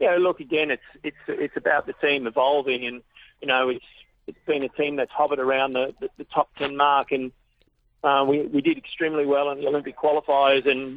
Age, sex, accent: 40-59, male, Australian